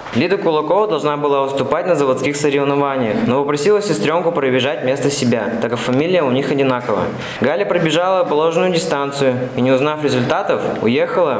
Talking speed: 155 wpm